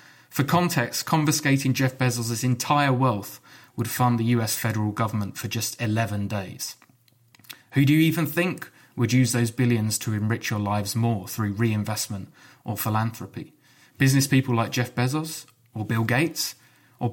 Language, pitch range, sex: English, 110-140 Hz, male